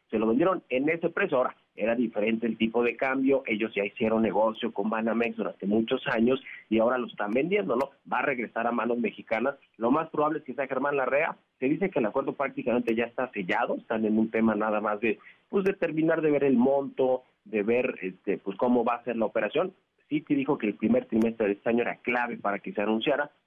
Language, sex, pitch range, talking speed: Spanish, male, 110-140 Hz, 230 wpm